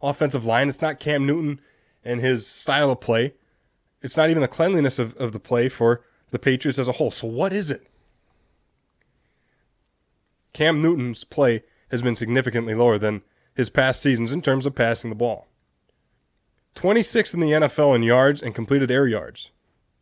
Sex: male